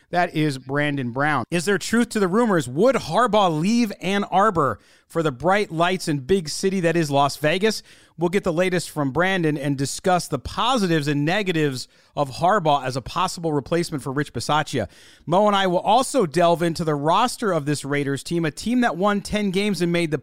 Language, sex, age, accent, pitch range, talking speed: English, male, 40-59, American, 145-195 Hz, 205 wpm